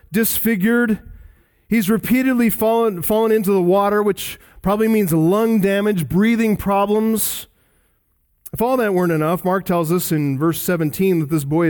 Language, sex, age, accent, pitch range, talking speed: English, male, 40-59, American, 140-215 Hz, 150 wpm